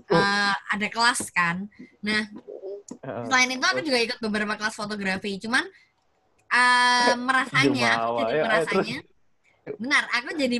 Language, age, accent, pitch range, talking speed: Indonesian, 20-39, native, 195-250 Hz, 120 wpm